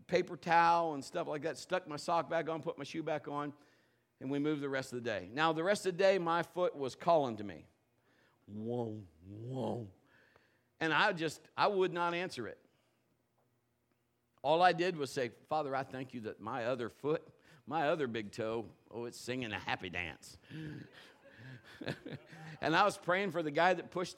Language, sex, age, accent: English, male, 50-69, American